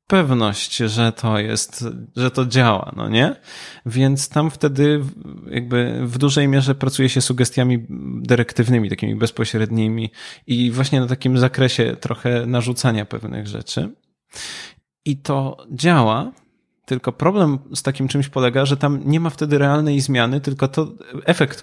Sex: male